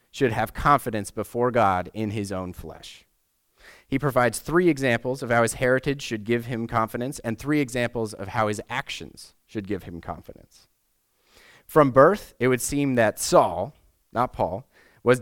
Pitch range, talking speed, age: 105-145 Hz, 165 wpm, 30-49